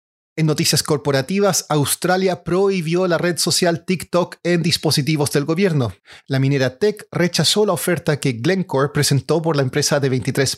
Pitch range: 140-170 Hz